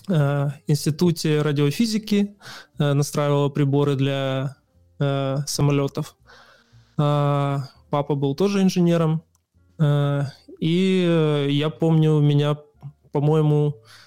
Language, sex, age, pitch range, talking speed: English, male, 20-39, 140-155 Hz, 70 wpm